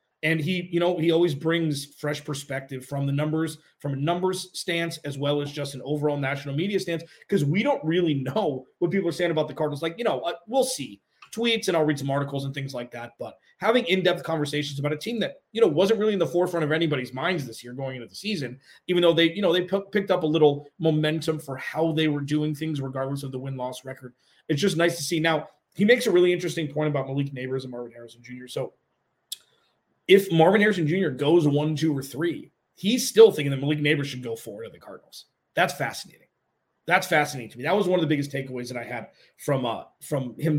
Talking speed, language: 235 wpm, English